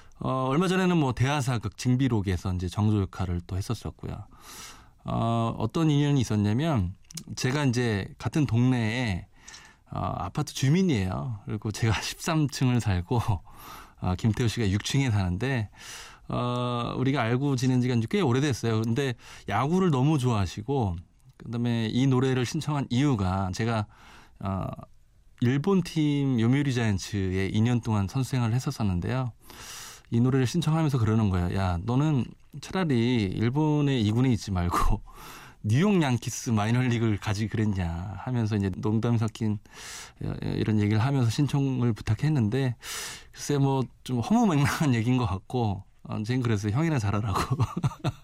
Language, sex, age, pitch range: Korean, male, 20-39, 105-135 Hz